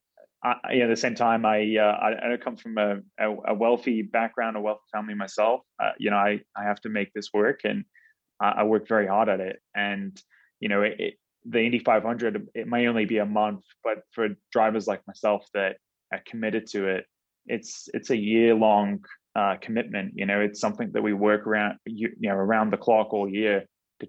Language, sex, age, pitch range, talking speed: English, male, 20-39, 100-110 Hz, 220 wpm